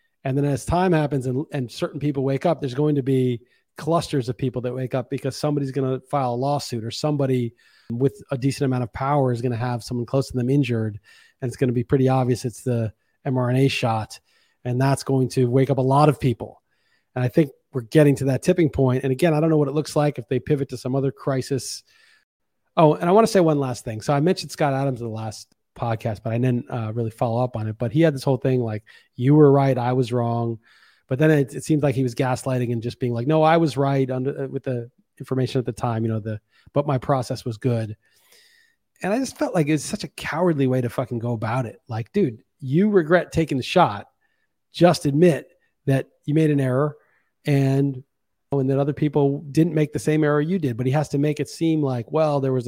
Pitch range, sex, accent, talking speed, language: 125-150 Hz, male, American, 245 wpm, English